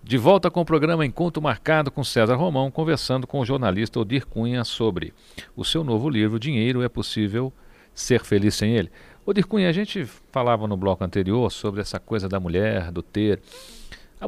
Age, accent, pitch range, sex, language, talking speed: 50-69, Brazilian, 95-125 Hz, male, Portuguese, 185 wpm